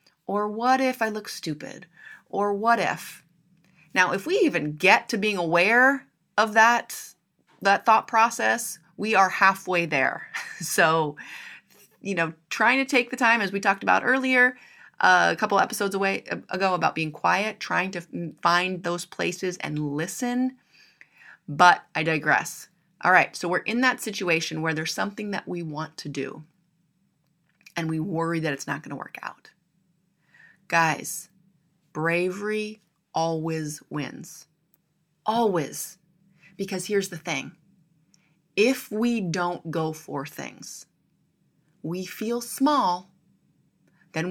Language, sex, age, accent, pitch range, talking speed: English, female, 30-49, American, 165-210 Hz, 140 wpm